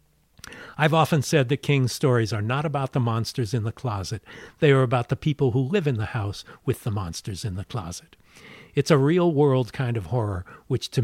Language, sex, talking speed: English, male, 205 wpm